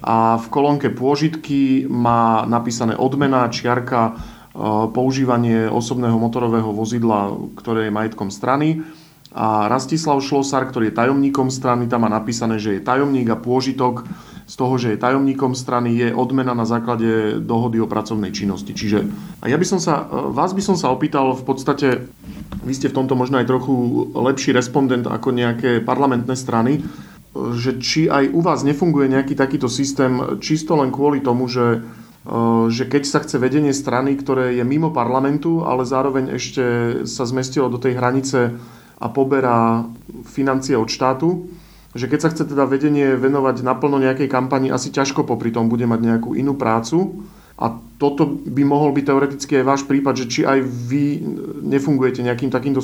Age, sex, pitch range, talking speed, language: 40-59, male, 120-140 Hz, 160 wpm, Slovak